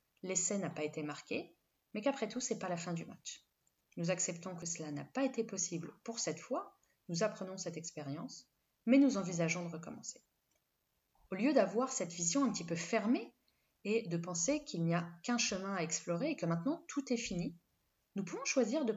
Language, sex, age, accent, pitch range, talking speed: French, female, 20-39, French, 165-230 Hz, 200 wpm